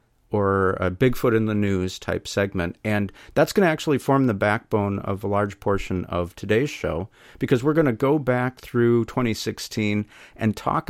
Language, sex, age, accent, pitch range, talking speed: English, male, 50-69, American, 100-125 Hz, 180 wpm